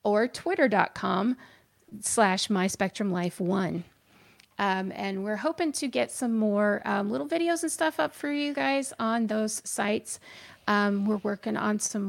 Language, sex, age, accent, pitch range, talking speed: English, female, 30-49, American, 200-245 Hz, 145 wpm